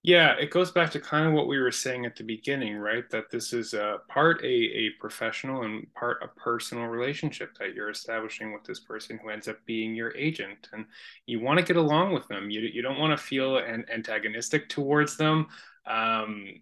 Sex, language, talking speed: male, English, 210 wpm